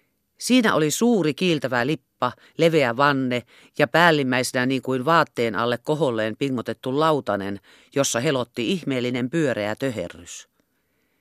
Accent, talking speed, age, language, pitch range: native, 110 wpm, 40-59, Finnish, 120-155 Hz